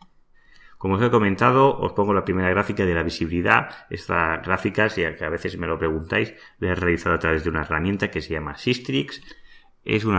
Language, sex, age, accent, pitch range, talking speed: Spanish, male, 30-49, Spanish, 80-95 Hz, 200 wpm